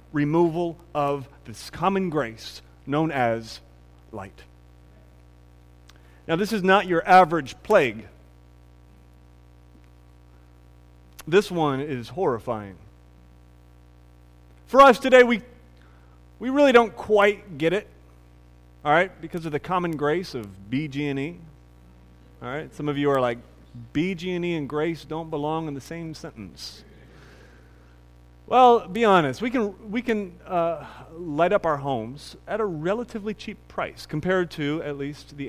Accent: American